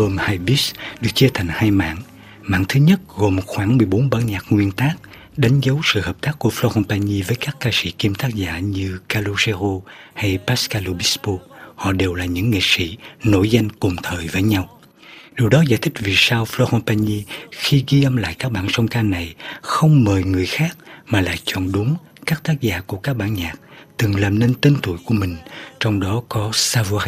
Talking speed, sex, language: 195 wpm, male, Vietnamese